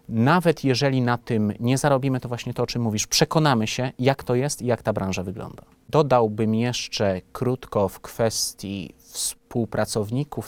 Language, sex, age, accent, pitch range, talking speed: Polish, male, 30-49, native, 105-130 Hz, 160 wpm